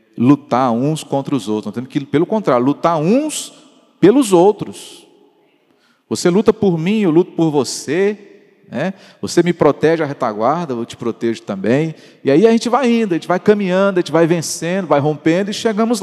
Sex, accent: male, Brazilian